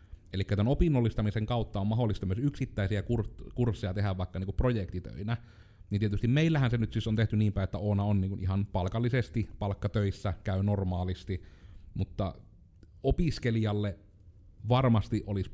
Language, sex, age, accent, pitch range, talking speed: Finnish, male, 30-49, native, 95-110 Hz, 145 wpm